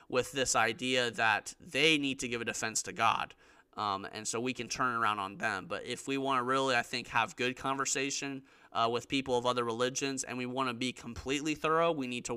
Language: English